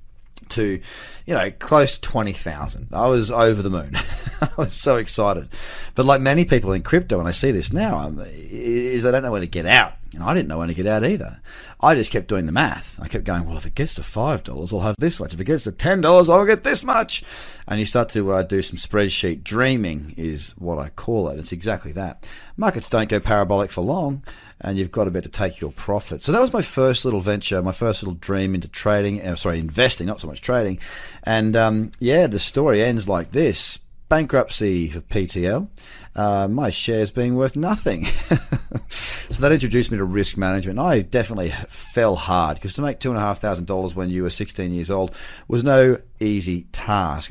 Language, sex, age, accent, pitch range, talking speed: English, male, 30-49, Australian, 90-120 Hz, 215 wpm